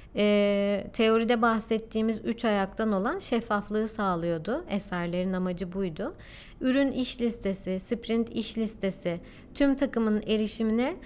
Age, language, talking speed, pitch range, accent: 30-49, Turkish, 110 wpm, 200-255 Hz, native